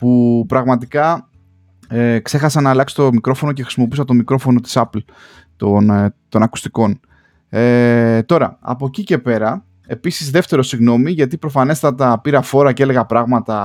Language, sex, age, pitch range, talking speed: Greek, male, 20-39, 110-140 Hz, 145 wpm